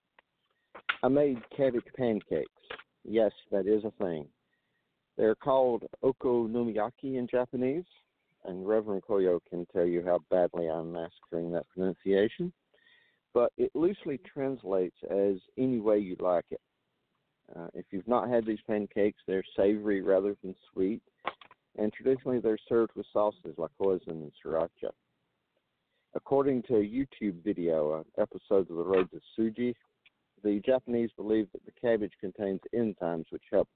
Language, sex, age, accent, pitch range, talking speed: English, male, 50-69, American, 90-120 Hz, 140 wpm